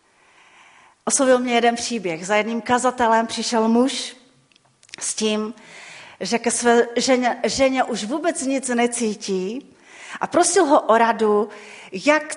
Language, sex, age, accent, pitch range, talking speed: Czech, female, 40-59, native, 195-280 Hz, 125 wpm